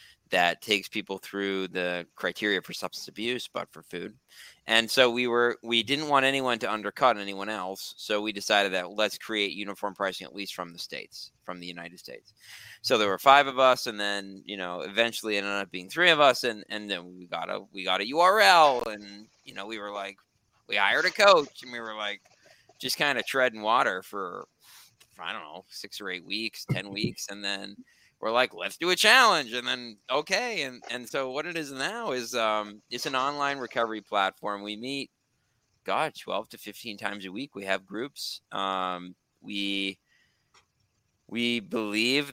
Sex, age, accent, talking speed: male, 30-49, American, 195 wpm